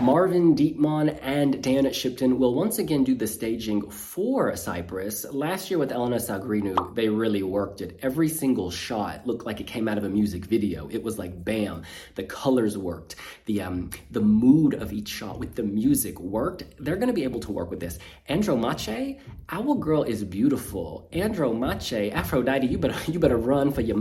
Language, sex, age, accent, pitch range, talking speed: English, male, 30-49, American, 105-140 Hz, 185 wpm